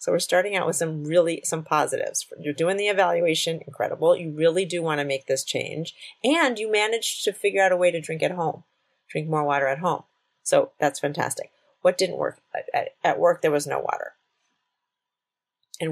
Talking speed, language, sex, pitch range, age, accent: 195 wpm, English, female, 150-200 Hz, 30-49, American